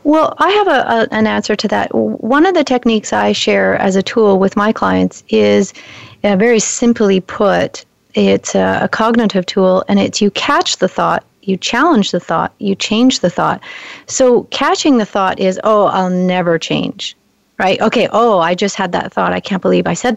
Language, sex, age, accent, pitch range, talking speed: English, female, 40-59, American, 185-240 Hz, 200 wpm